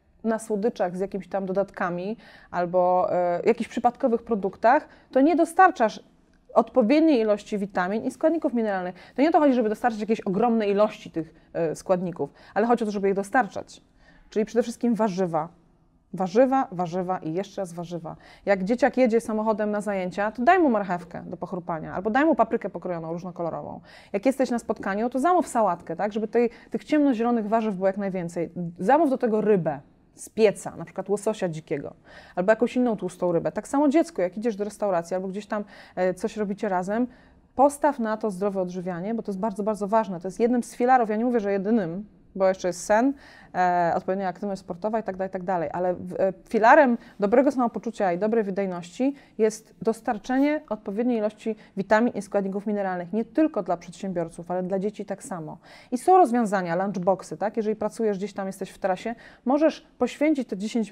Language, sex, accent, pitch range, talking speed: Polish, female, native, 190-240 Hz, 185 wpm